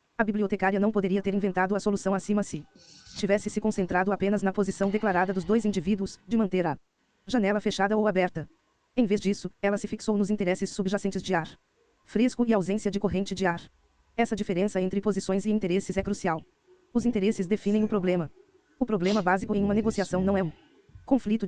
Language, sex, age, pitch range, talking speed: Portuguese, female, 20-39, 190-215 Hz, 190 wpm